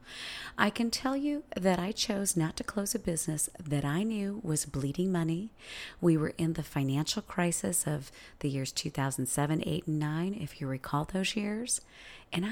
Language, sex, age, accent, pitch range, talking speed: English, female, 40-59, American, 155-220 Hz, 175 wpm